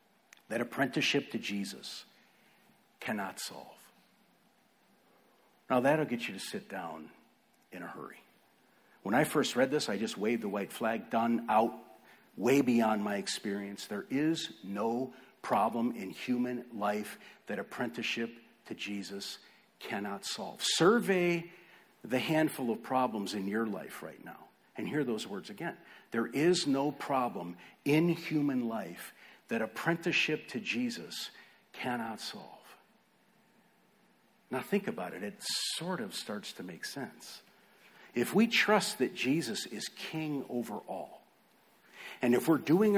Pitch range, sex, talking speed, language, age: 110-155 Hz, male, 135 wpm, English, 50-69